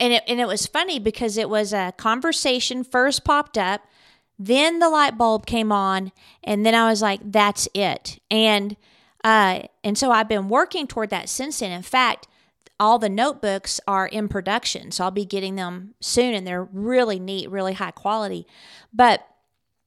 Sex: female